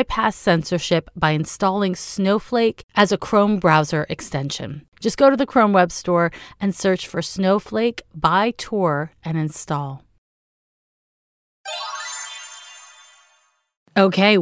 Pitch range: 160-215 Hz